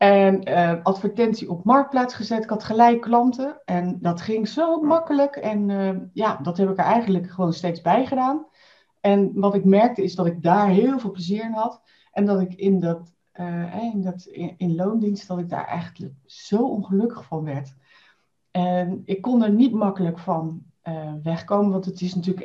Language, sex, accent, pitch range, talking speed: Dutch, female, Dutch, 165-210 Hz, 190 wpm